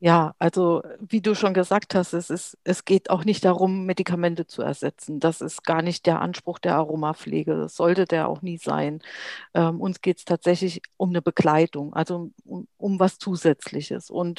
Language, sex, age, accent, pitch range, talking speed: German, female, 50-69, German, 160-195 Hz, 190 wpm